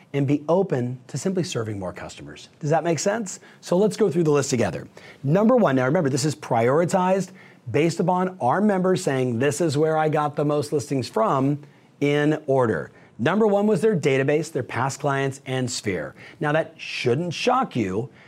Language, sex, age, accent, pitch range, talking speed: English, male, 40-59, American, 135-190 Hz, 185 wpm